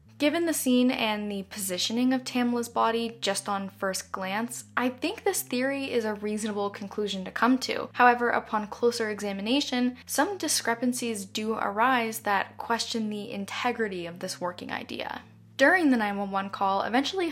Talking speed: 155 wpm